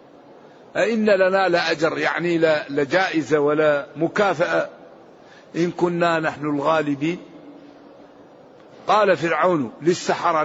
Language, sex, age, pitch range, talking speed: Arabic, male, 50-69, 165-210 Hz, 90 wpm